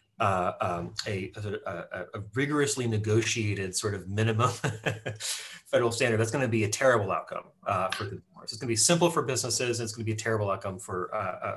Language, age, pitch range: English, 30-49, 105-130 Hz